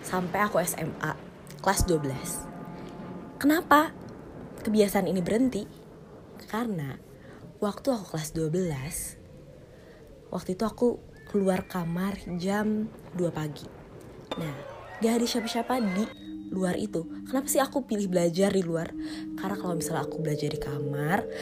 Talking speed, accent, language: 120 wpm, native, Indonesian